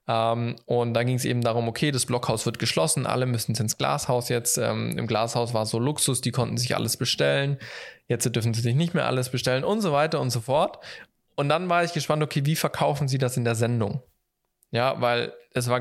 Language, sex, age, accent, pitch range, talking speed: German, male, 20-39, German, 120-145 Hz, 215 wpm